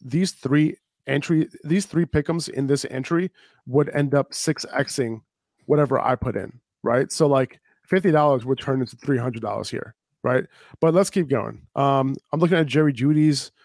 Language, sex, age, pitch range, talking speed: English, male, 30-49, 130-155 Hz, 170 wpm